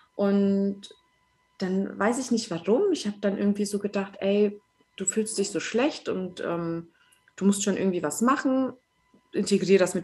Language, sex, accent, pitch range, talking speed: German, female, German, 195-250 Hz, 175 wpm